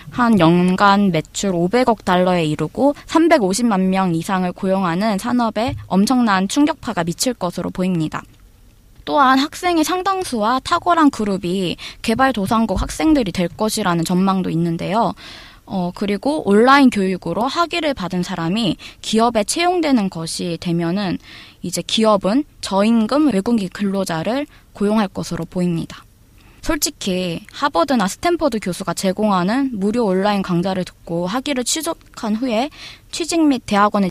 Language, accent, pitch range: Korean, native, 175-240 Hz